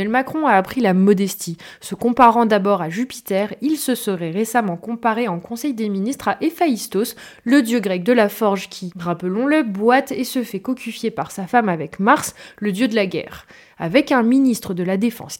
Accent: French